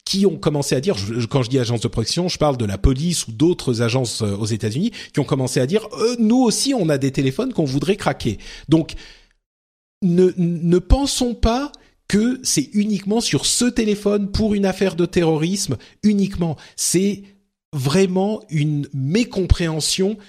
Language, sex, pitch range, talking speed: French, male, 140-200 Hz, 175 wpm